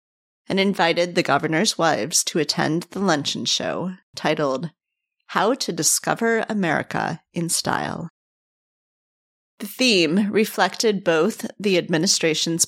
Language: English